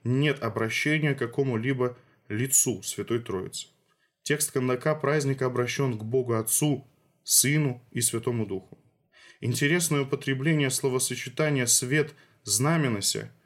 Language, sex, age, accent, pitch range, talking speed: Russian, male, 20-39, native, 125-150 Hz, 105 wpm